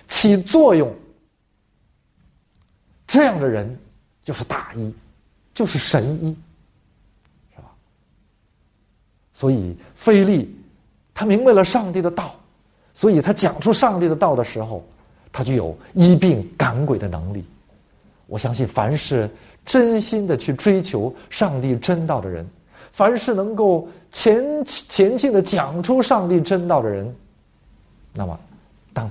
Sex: male